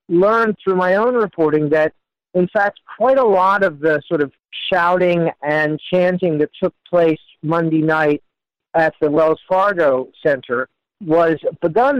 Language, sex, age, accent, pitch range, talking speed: English, male, 50-69, American, 155-185 Hz, 150 wpm